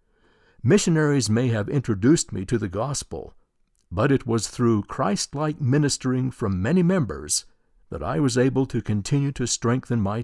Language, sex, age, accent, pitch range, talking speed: English, male, 60-79, American, 105-135 Hz, 150 wpm